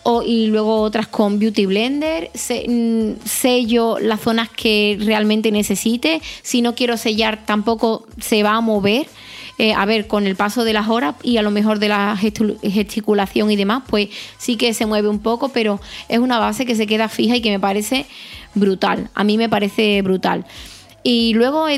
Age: 20-39